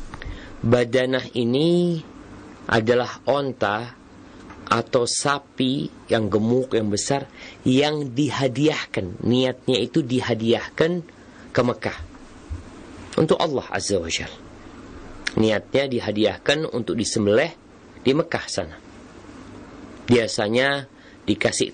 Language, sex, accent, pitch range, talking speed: Indonesian, male, native, 105-145 Hz, 85 wpm